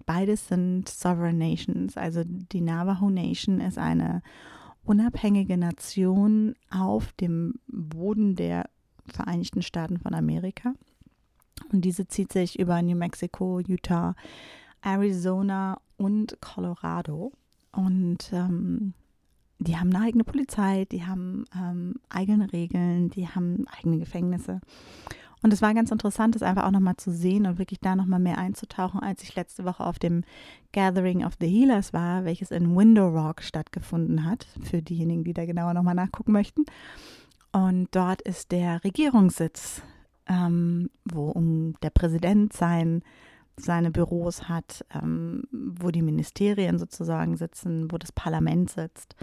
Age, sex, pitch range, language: 30-49, female, 170-200 Hz, German